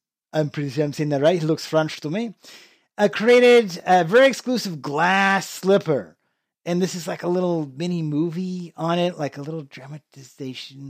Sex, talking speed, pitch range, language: male, 180 wpm, 155-215 Hz, English